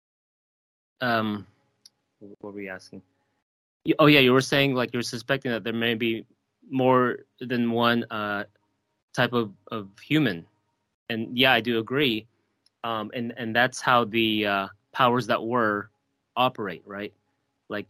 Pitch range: 105-125 Hz